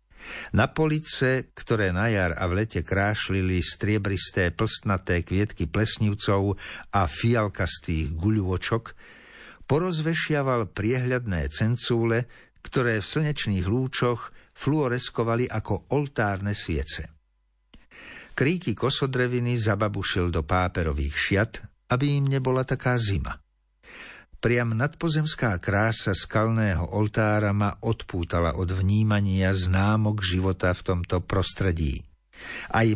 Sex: male